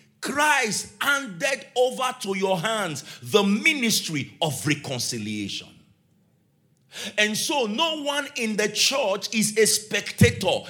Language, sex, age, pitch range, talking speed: English, male, 50-69, 180-255 Hz, 110 wpm